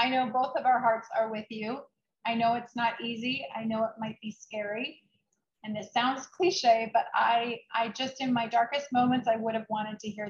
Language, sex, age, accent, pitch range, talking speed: English, female, 30-49, American, 215-240 Hz, 220 wpm